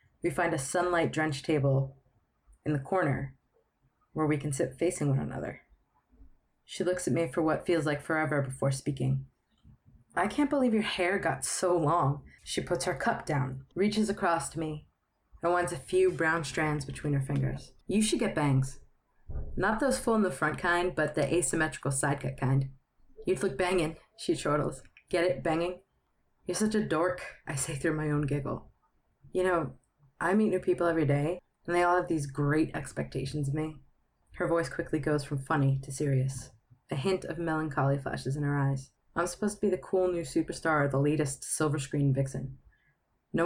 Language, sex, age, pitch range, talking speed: English, female, 30-49, 140-185 Hz, 185 wpm